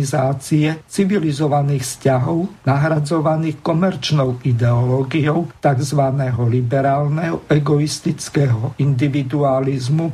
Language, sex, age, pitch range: Slovak, male, 50-69, 130-160 Hz